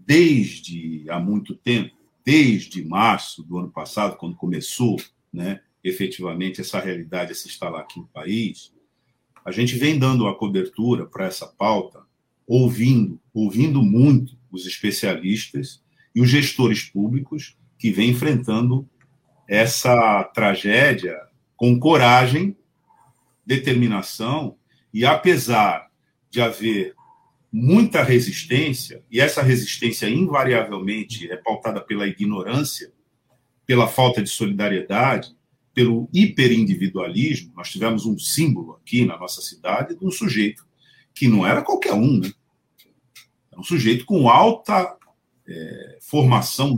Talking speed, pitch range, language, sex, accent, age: 115 wpm, 105-135 Hz, Portuguese, male, Brazilian, 50-69